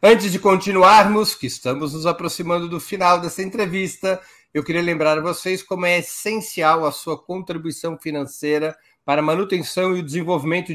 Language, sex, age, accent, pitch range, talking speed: Portuguese, male, 60-79, Brazilian, 135-185 Hz, 160 wpm